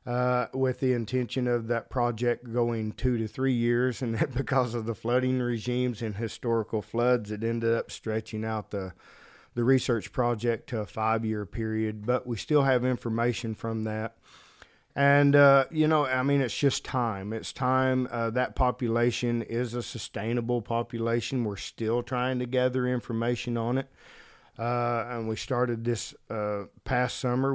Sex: male